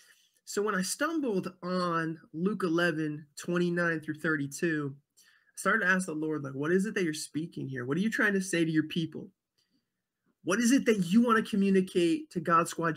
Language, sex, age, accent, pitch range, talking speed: English, male, 20-39, American, 155-195 Hz, 205 wpm